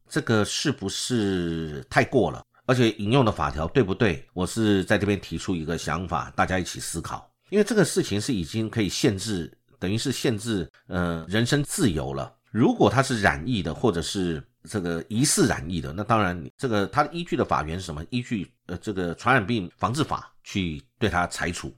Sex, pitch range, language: male, 85-120 Hz, Chinese